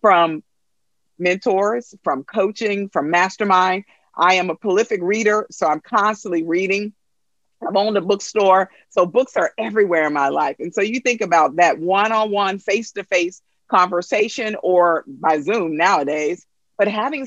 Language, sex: English, female